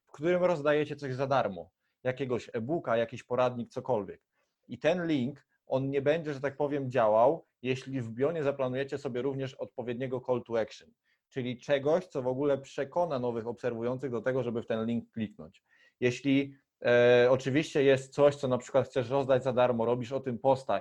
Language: Polish